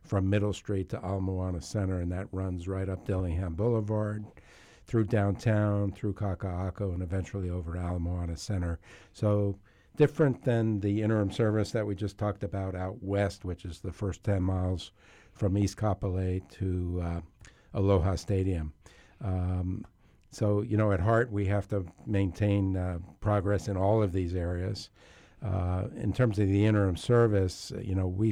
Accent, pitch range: American, 95-105 Hz